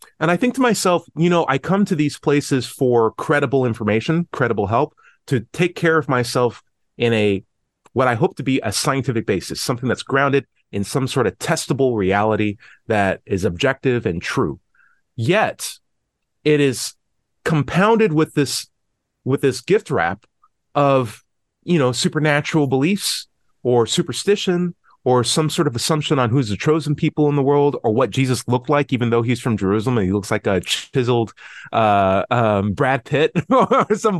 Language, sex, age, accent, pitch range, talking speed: English, male, 30-49, American, 120-160 Hz, 170 wpm